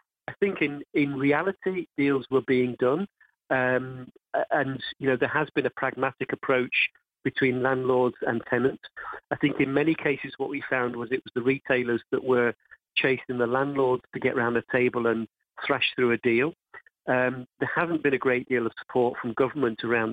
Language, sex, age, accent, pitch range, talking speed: English, male, 40-59, British, 120-135 Hz, 190 wpm